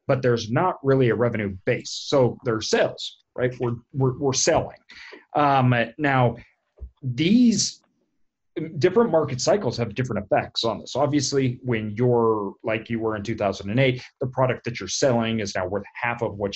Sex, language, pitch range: male, English, 110-135 Hz